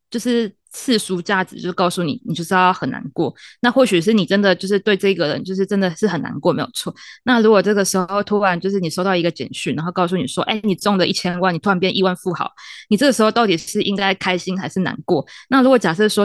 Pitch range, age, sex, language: 185-215 Hz, 20-39, female, Chinese